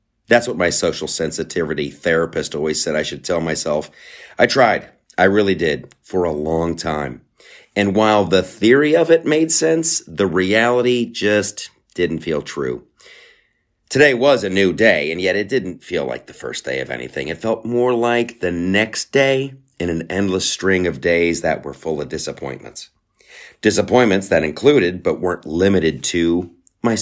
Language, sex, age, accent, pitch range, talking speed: English, male, 40-59, American, 80-120 Hz, 170 wpm